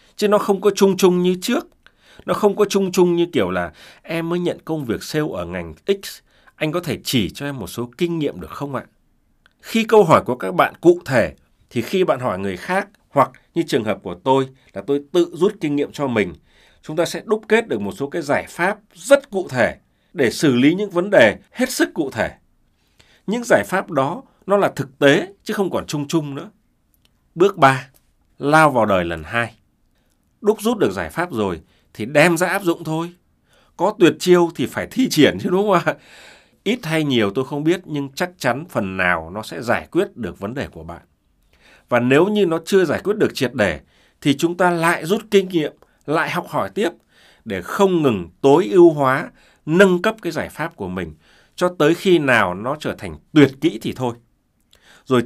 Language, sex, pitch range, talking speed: Vietnamese, male, 135-195 Hz, 215 wpm